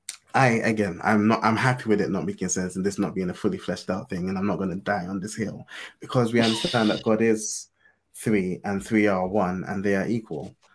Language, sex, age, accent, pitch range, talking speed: English, male, 20-39, British, 95-110 Hz, 240 wpm